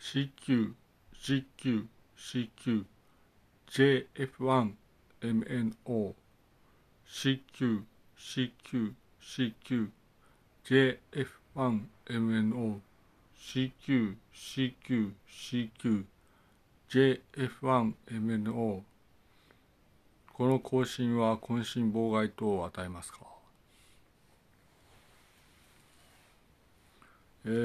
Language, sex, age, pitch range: Japanese, male, 60-79, 105-130 Hz